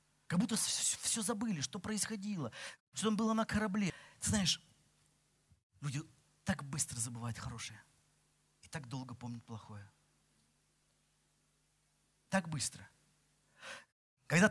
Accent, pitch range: native, 135-220 Hz